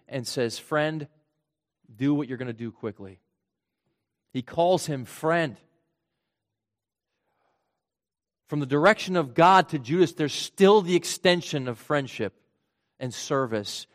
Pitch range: 120-160 Hz